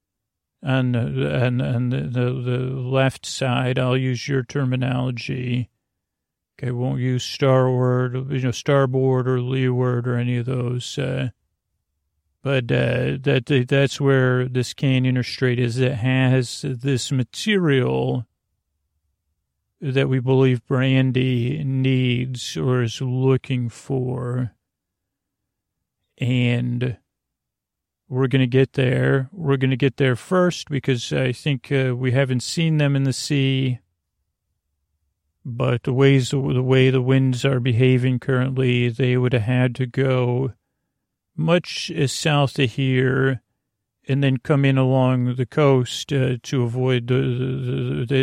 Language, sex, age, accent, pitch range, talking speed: English, male, 40-59, American, 120-135 Hz, 130 wpm